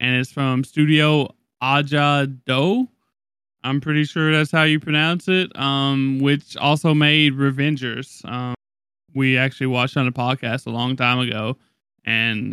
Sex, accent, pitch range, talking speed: male, American, 125-150 Hz, 155 wpm